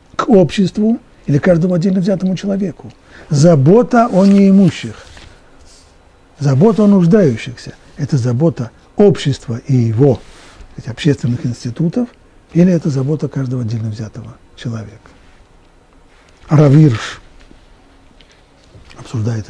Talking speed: 95 wpm